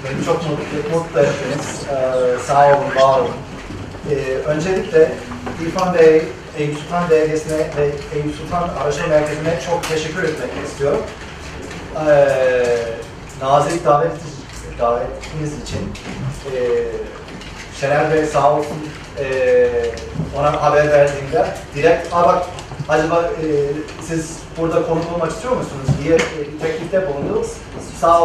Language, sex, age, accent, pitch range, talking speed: Turkish, male, 40-59, native, 140-170 Hz, 115 wpm